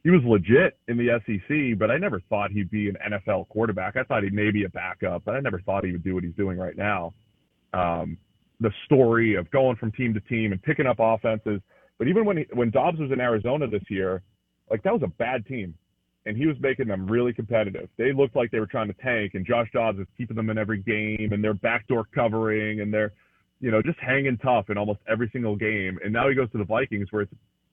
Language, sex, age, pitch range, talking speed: English, male, 30-49, 105-120 Hz, 245 wpm